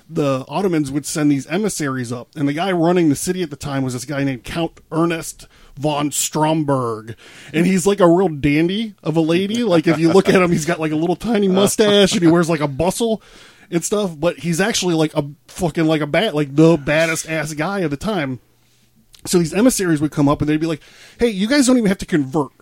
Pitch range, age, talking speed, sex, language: 150-190 Hz, 20-39, 235 wpm, male, English